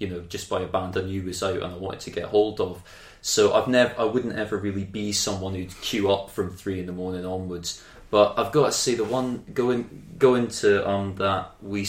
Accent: British